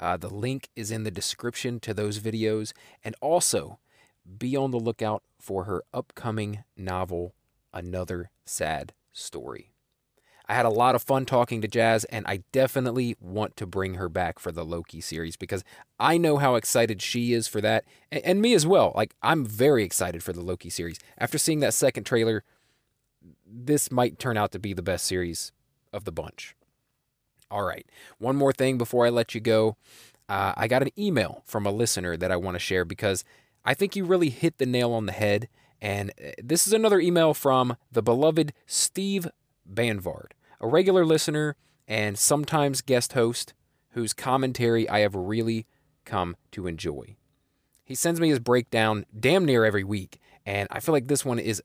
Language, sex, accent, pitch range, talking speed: English, male, American, 100-135 Hz, 185 wpm